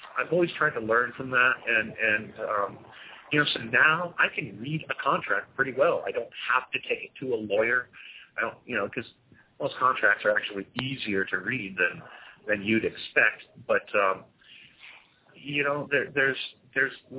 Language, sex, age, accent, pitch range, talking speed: English, male, 40-59, American, 135-220 Hz, 185 wpm